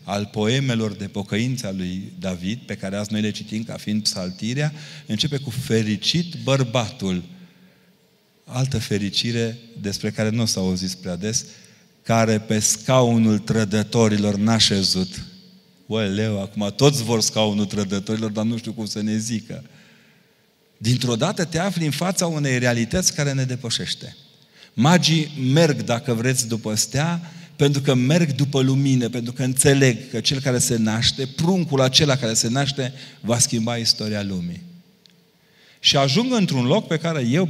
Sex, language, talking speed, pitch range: male, Romanian, 150 wpm, 110-150 Hz